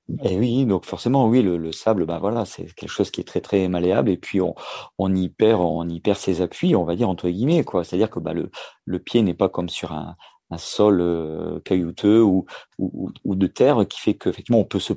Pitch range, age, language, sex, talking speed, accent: 90-110 Hz, 40-59, French, male, 255 wpm, French